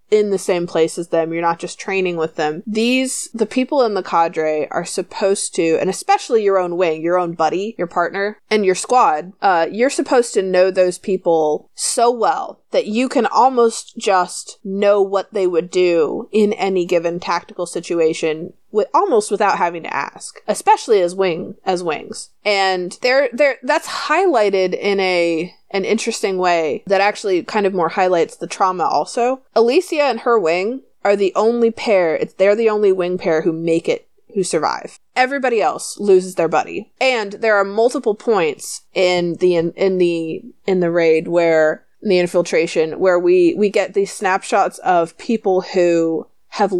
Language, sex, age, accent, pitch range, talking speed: English, female, 20-39, American, 175-230 Hz, 175 wpm